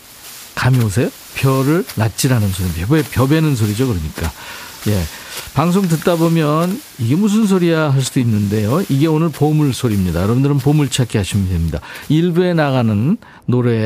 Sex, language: male, Korean